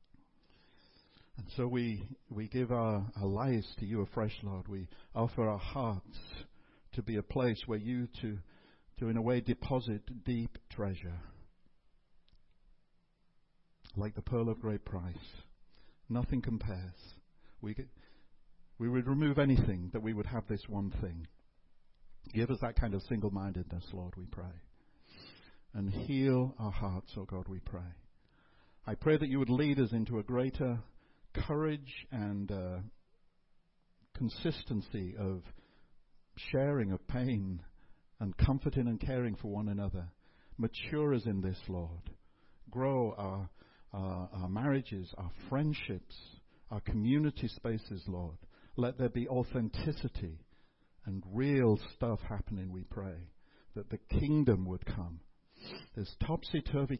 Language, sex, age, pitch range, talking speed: English, male, 60-79, 95-125 Hz, 135 wpm